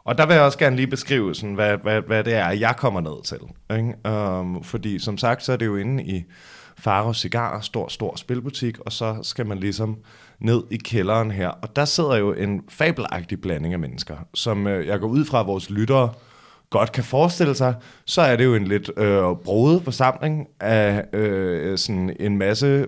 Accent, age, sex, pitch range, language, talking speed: native, 20-39, male, 100-130 Hz, Danish, 205 wpm